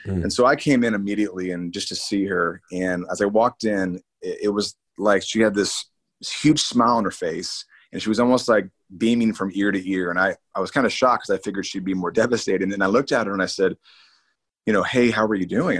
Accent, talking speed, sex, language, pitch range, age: American, 255 wpm, male, English, 95-115 Hz, 30-49